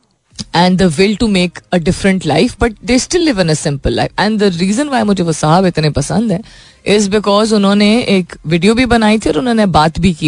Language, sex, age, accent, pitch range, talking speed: Hindi, female, 20-39, native, 150-205 Hz, 230 wpm